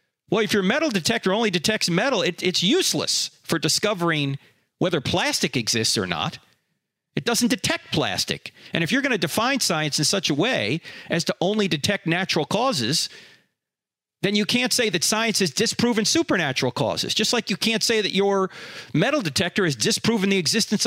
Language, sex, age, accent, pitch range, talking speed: English, male, 40-59, American, 115-190 Hz, 175 wpm